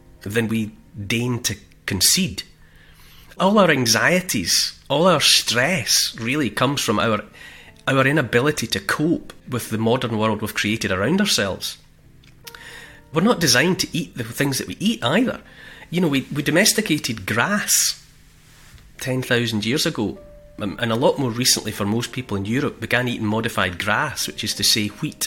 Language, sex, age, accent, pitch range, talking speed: English, male, 30-49, British, 105-150 Hz, 155 wpm